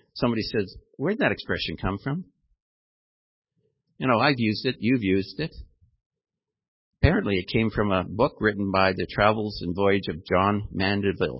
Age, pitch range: 60-79, 95-120 Hz